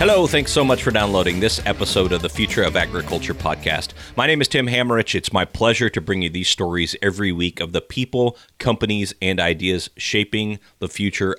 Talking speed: 200 wpm